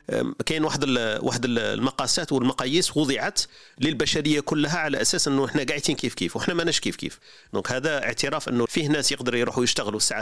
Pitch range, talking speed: 120-155 Hz, 170 wpm